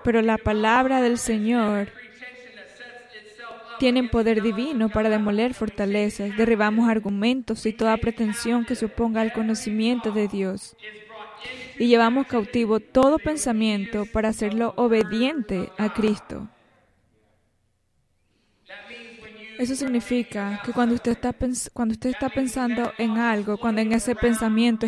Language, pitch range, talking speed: Spanish, 220-250 Hz, 120 wpm